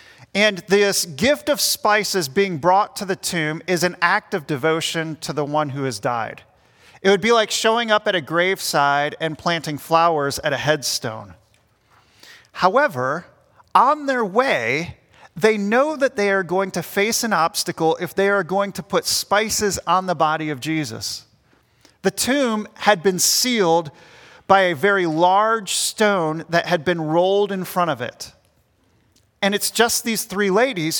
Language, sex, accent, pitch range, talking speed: English, male, American, 155-205 Hz, 165 wpm